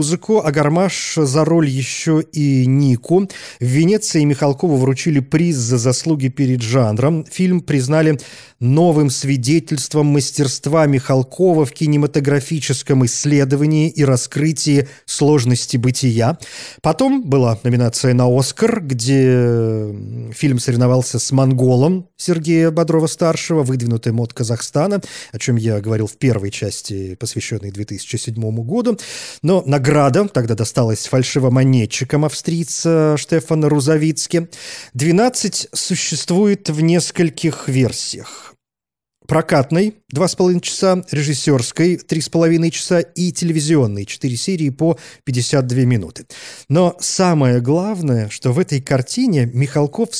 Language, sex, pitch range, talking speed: Russian, male, 125-165 Hz, 110 wpm